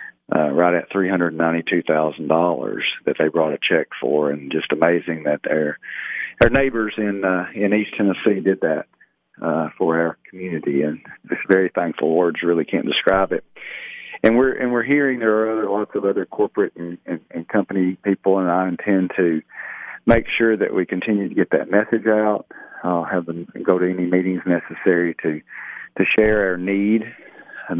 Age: 40-59